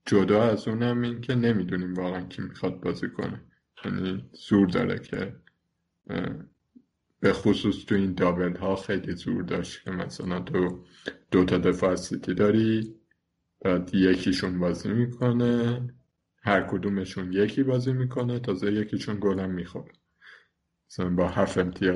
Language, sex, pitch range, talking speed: Persian, male, 95-125 Hz, 130 wpm